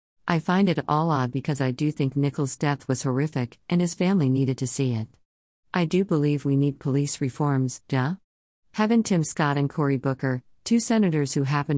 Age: 50-69